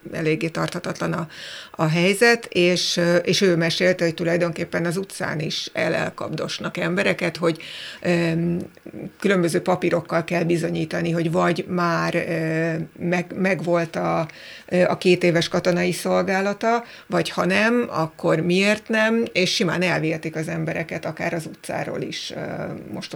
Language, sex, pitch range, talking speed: Hungarian, female, 165-185 Hz, 120 wpm